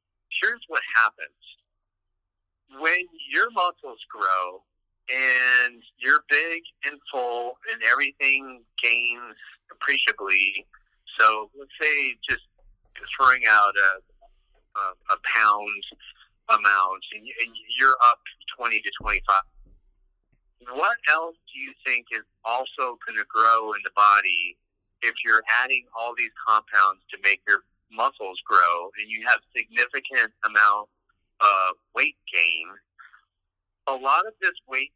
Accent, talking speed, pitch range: American, 120 wpm, 105-135 Hz